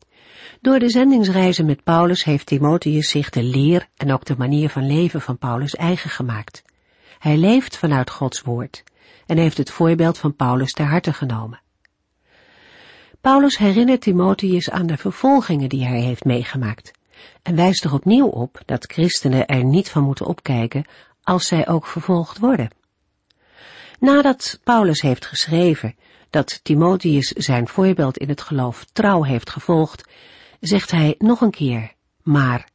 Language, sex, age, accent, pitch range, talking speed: Dutch, female, 50-69, Dutch, 135-185 Hz, 150 wpm